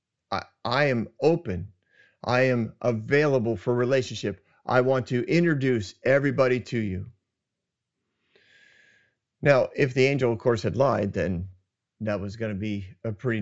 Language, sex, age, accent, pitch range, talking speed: English, male, 40-59, American, 115-160 Hz, 140 wpm